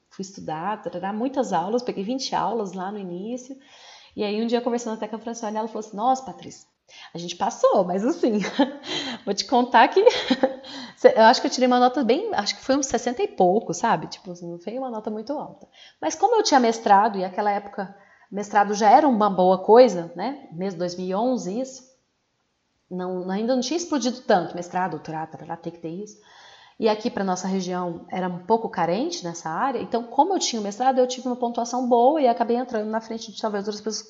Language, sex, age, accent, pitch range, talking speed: Portuguese, female, 30-49, Brazilian, 205-265 Hz, 215 wpm